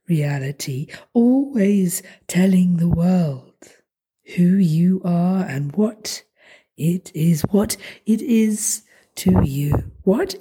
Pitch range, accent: 155-205 Hz, British